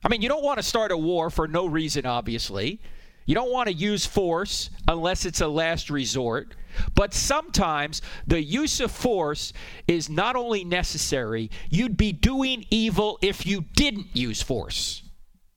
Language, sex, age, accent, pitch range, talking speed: English, male, 50-69, American, 125-175 Hz, 165 wpm